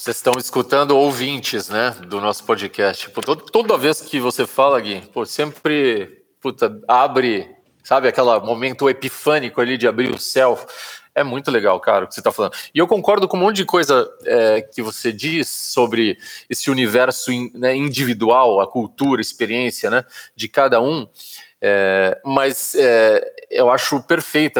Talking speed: 170 wpm